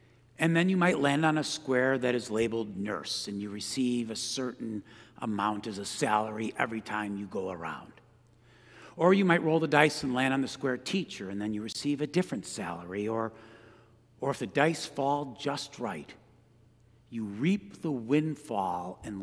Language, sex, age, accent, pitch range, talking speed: English, male, 60-79, American, 110-145 Hz, 180 wpm